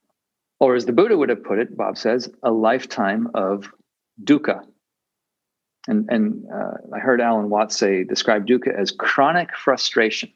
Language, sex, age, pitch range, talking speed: English, male, 50-69, 115-190 Hz, 155 wpm